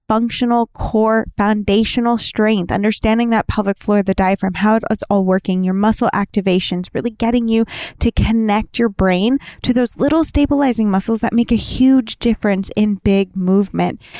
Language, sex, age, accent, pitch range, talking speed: English, female, 10-29, American, 195-230 Hz, 155 wpm